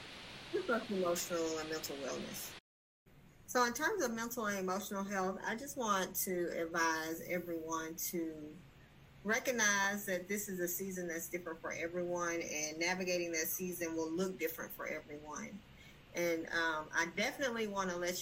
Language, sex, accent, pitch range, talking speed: English, female, American, 165-200 Hz, 150 wpm